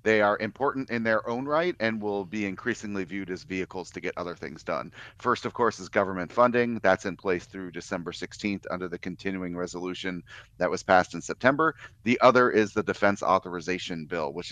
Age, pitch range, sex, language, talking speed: 40-59, 90-110 Hz, male, English, 200 wpm